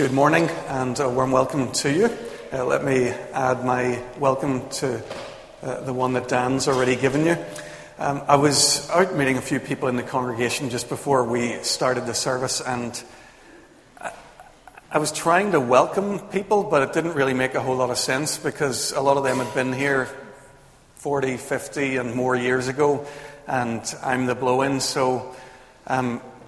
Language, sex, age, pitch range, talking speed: English, male, 40-59, 125-140 Hz, 175 wpm